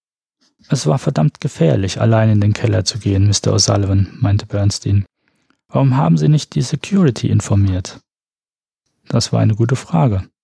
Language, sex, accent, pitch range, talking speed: German, male, German, 105-135 Hz, 150 wpm